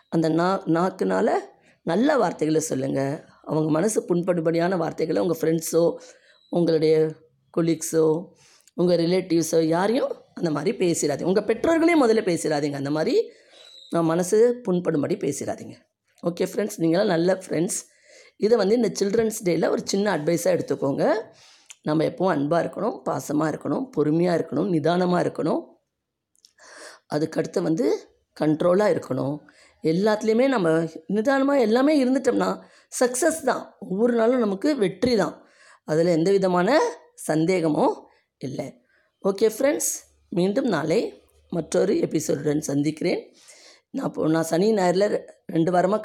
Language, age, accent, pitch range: Tamil, 20-39, native, 160-210 Hz